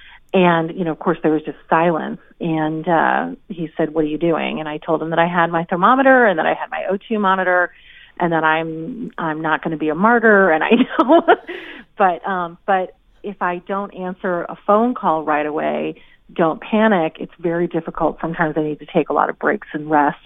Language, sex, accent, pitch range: English, female, American, 170-205 Hz